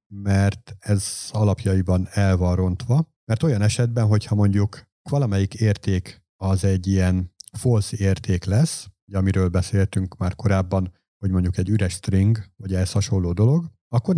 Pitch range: 95-110 Hz